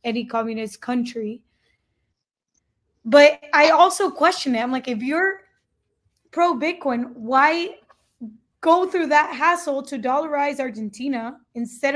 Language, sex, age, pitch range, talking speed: English, female, 20-39, 240-285 Hz, 115 wpm